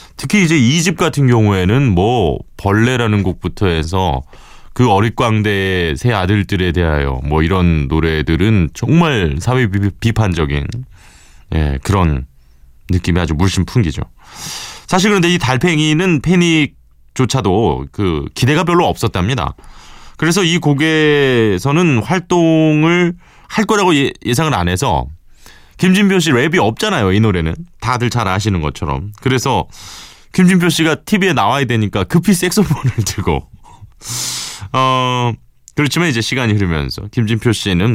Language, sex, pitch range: Korean, male, 90-145 Hz